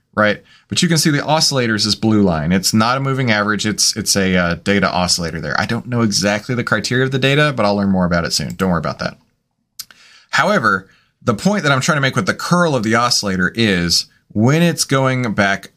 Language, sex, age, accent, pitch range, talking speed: English, male, 30-49, American, 95-125 Hz, 235 wpm